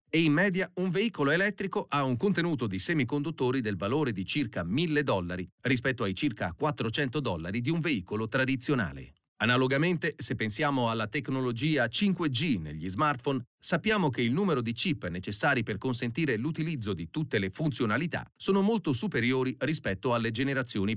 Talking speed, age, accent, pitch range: 155 wpm, 40-59, native, 110-150 Hz